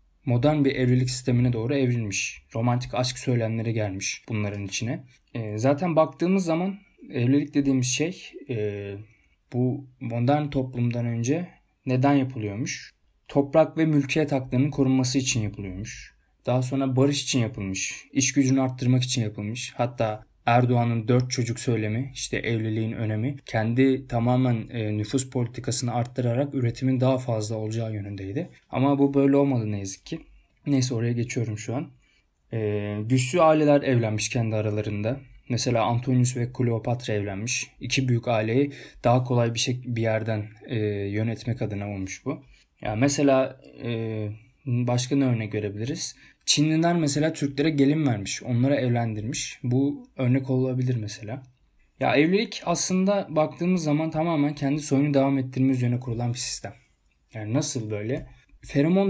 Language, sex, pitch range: Turkish, male, 115-140 Hz